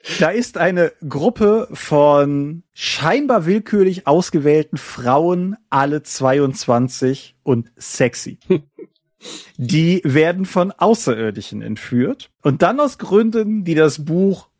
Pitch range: 125-165 Hz